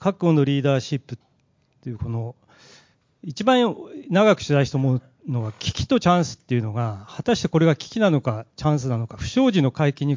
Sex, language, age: male, Japanese, 40-59